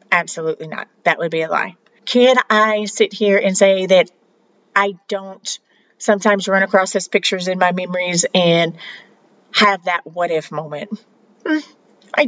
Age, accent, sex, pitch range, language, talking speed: 40-59, American, female, 170-230 Hz, English, 150 wpm